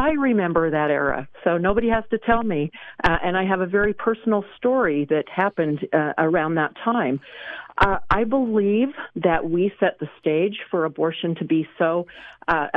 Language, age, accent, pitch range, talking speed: English, 50-69, American, 155-205 Hz, 180 wpm